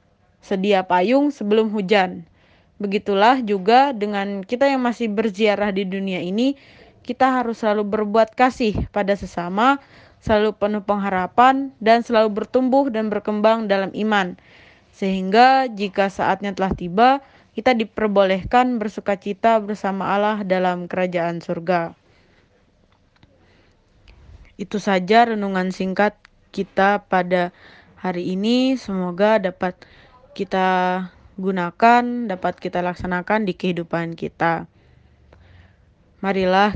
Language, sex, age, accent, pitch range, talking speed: Indonesian, female, 20-39, native, 180-220 Hz, 105 wpm